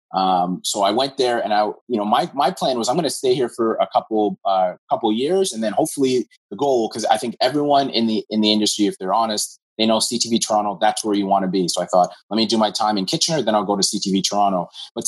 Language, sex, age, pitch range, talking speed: English, male, 30-49, 95-120 Hz, 270 wpm